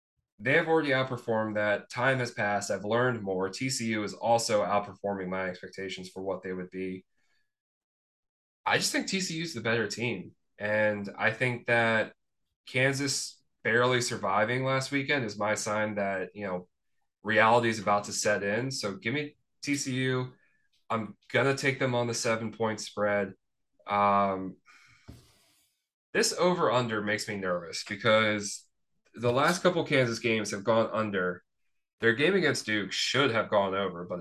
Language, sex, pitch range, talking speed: English, male, 105-130 Hz, 160 wpm